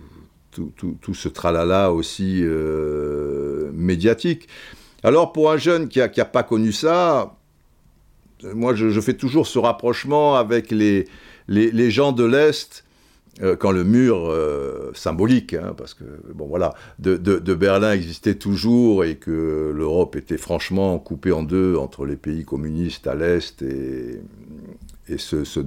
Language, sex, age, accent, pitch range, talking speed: French, male, 60-79, French, 85-120 Hz, 160 wpm